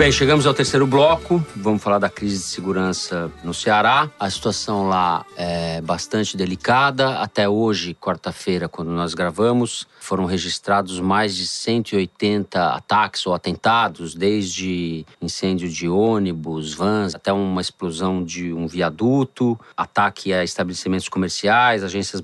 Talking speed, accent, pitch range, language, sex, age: 130 wpm, Brazilian, 90-105 Hz, Portuguese, male, 40-59